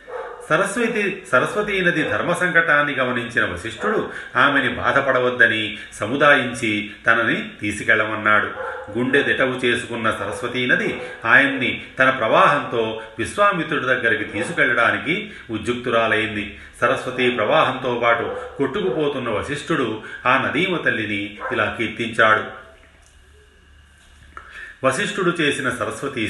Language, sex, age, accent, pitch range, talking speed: Telugu, male, 40-59, native, 115-135 Hz, 80 wpm